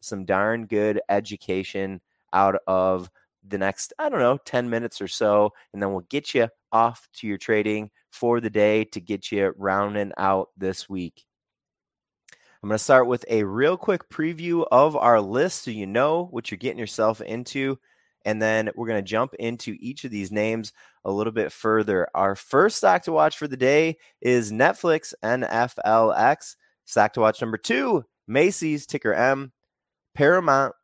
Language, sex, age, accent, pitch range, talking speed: English, male, 20-39, American, 105-130 Hz, 175 wpm